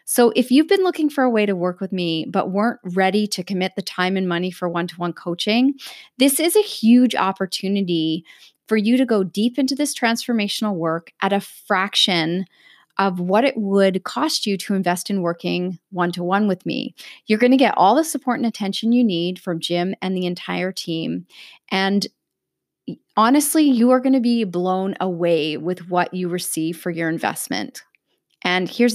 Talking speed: 185 wpm